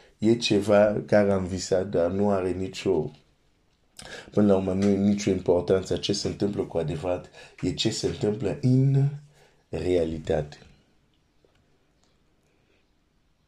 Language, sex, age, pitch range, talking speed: Romanian, male, 50-69, 85-105 Hz, 110 wpm